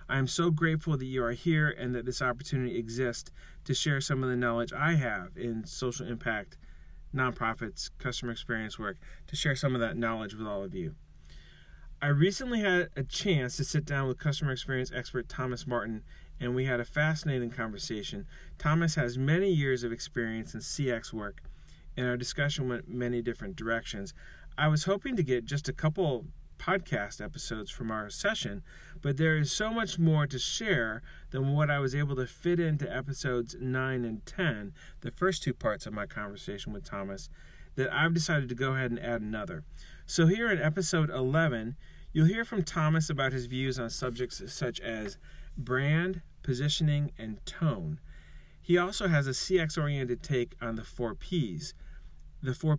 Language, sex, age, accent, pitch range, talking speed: English, male, 30-49, American, 115-150 Hz, 180 wpm